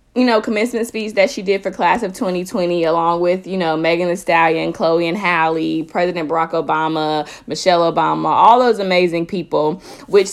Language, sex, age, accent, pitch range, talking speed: English, female, 20-39, American, 165-215 Hz, 180 wpm